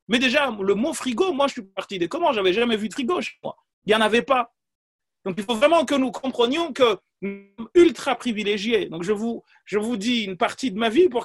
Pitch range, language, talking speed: 200-290 Hz, French, 255 wpm